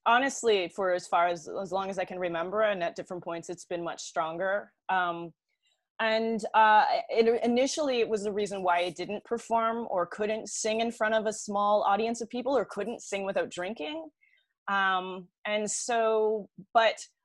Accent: American